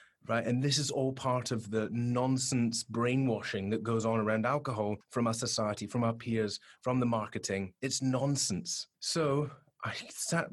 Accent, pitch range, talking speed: British, 110-145 Hz, 165 wpm